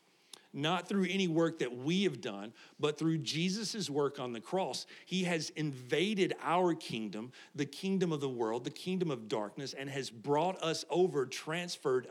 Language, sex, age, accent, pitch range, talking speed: English, male, 50-69, American, 135-170 Hz, 175 wpm